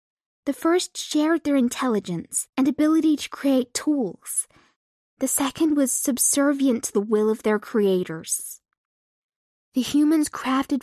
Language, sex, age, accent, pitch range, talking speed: English, female, 10-29, American, 220-275 Hz, 125 wpm